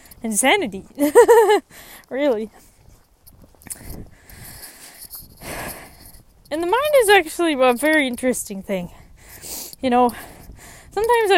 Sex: female